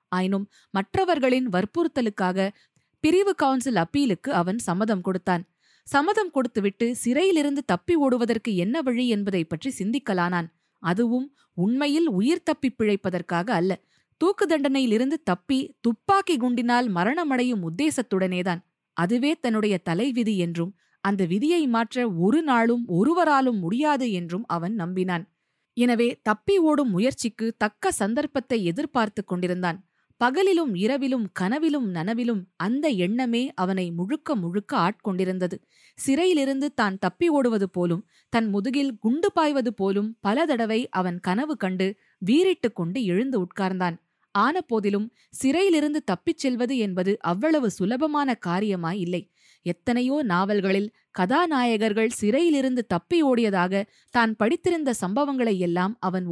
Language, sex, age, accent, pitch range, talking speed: Tamil, female, 20-39, native, 185-270 Hz, 105 wpm